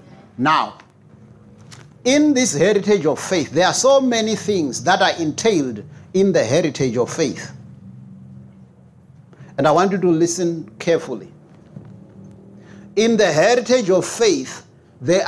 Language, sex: English, male